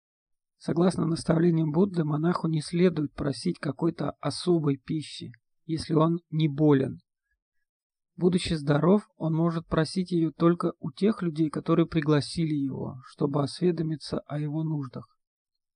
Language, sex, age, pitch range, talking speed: Russian, male, 40-59, 150-175 Hz, 120 wpm